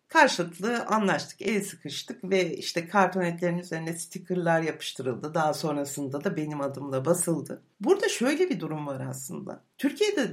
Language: Turkish